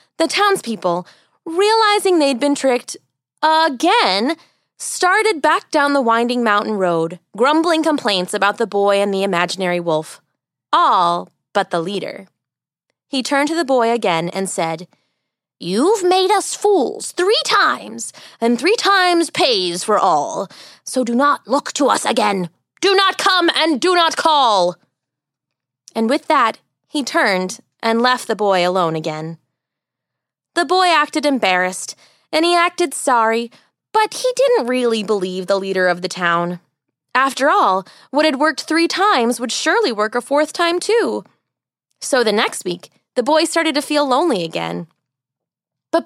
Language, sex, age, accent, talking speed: English, female, 20-39, American, 150 wpm